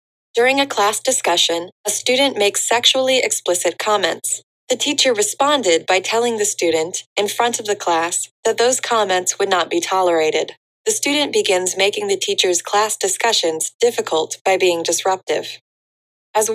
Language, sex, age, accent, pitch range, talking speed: English, female, 20-39, American, 180-255 Hz, 150 wpm